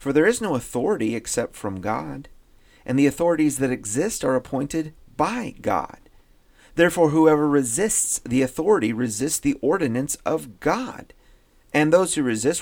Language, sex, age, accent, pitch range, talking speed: English, male, 40-59, American, 115-170 Hz, 145 wpm